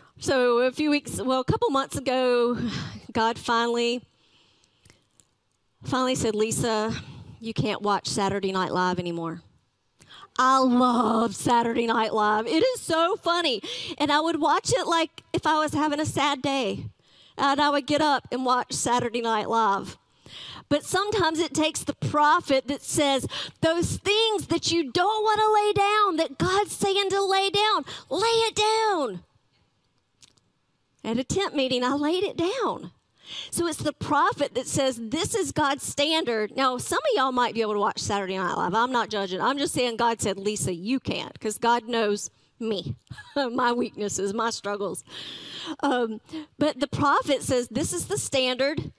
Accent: American